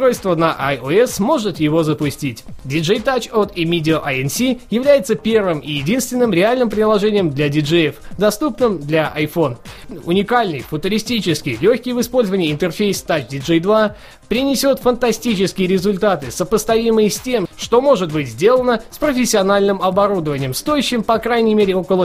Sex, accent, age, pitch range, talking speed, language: male, native, 20-39, 160-235 Hz, 135 wpm, Russian